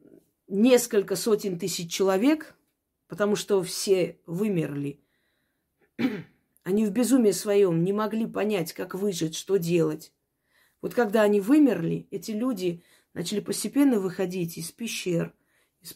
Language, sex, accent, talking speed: Russian, female, native, 115 wpm